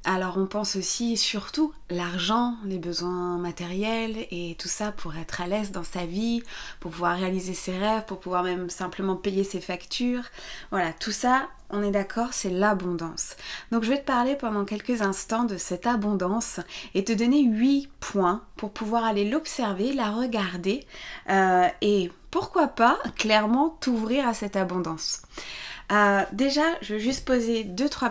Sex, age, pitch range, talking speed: female, 20-39, 190-240 Hz, 165 wpm